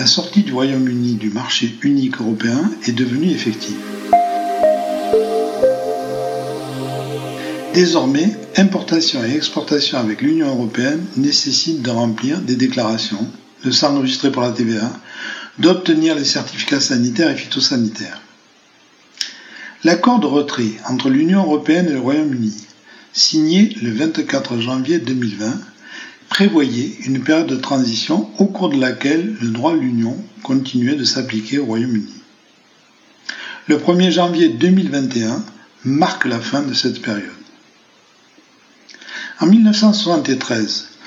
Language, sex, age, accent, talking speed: French, male, 60-79, French, 115 wpm